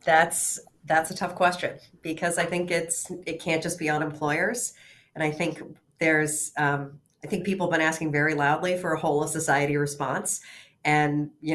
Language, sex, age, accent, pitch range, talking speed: English, female, 40-59, American, 145-170 Hz, 185 wpm